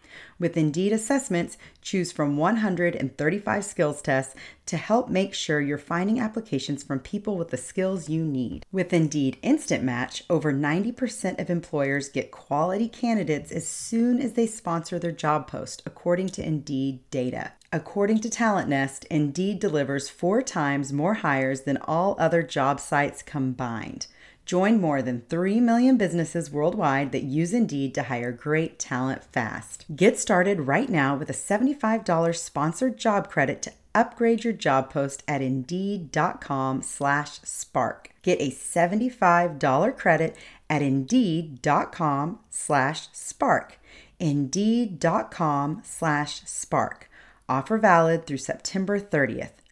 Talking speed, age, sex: 130 wpm, 40-59, female